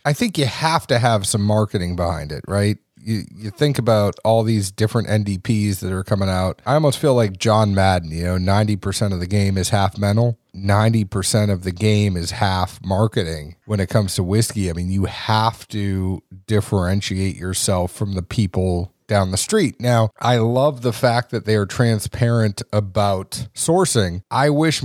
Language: English